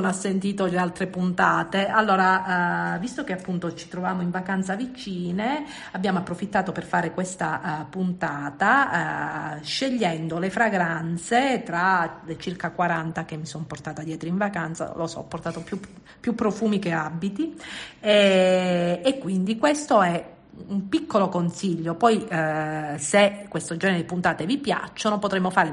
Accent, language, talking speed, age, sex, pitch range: native, Italian, 150 wpm, 50-69, female, 165-200 Hz